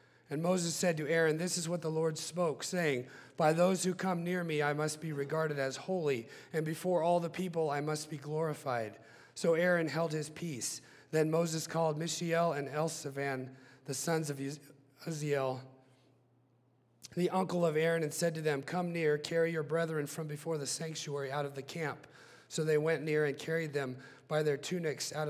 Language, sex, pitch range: English, male, 135-165 Hz